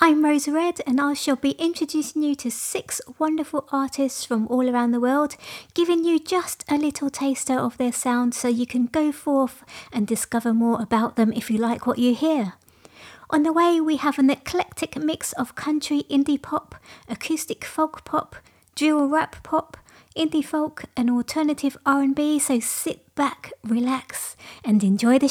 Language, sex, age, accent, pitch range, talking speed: English, female, 30-49, British, 250-315 Hz, 175 wpm